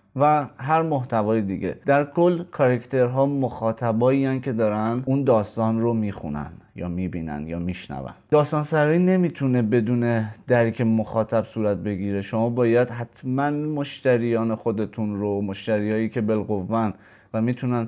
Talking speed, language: 120 wpm, Persian